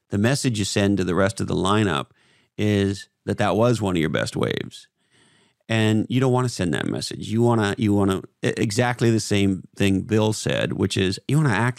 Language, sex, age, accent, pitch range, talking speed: English, male, 40-59, American, 100-125 Hz, 230 wpm